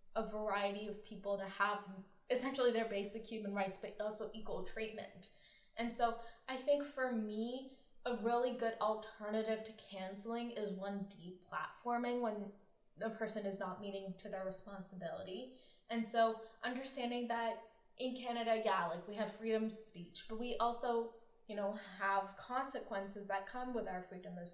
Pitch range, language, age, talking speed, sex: 200-230 Hz, English, 10-29, 160 wpm, female